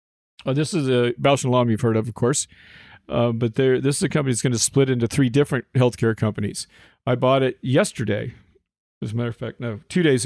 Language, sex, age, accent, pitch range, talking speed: English, male, 50-69, American, 115-135 Hz, 215 wpm